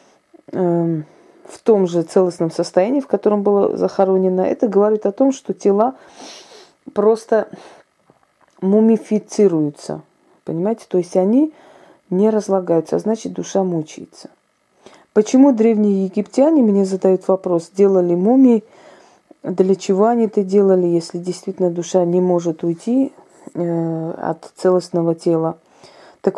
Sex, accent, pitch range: female, native, 175-210 Hz